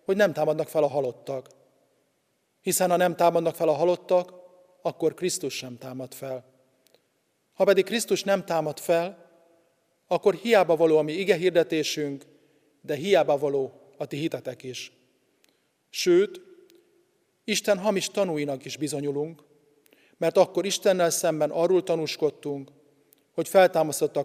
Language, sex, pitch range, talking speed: Hungarian, male, 145-185 Hz, 130 wpm